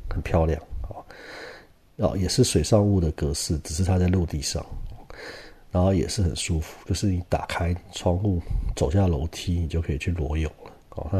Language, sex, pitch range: Chinese, male, 85-100 Hz